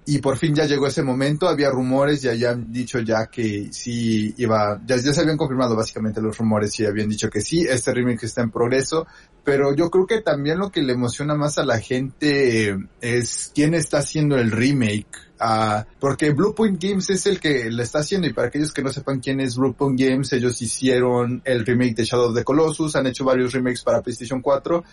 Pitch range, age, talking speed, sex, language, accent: 115-150 Hz, 30-49, 215 wpm, male, Spanish, Mexican